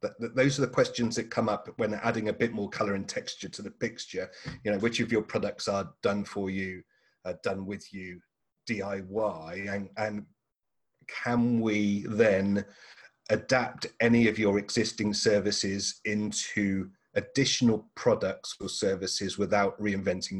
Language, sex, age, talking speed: English, male, 30-49, 155 wpm